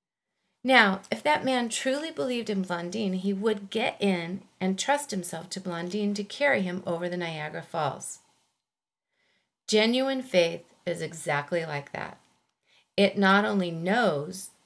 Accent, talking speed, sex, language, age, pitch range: American, 140 wpm, female, English, 40-59, 180-250 Hz